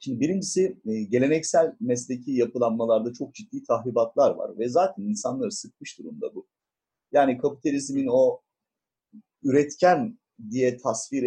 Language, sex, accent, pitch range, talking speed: Turkish, male, native, 115-170 Hz, 110 wpm